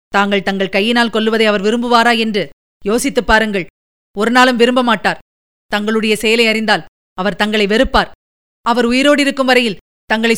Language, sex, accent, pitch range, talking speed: Tamil, female, native, 210-280 Hz, 135 wpm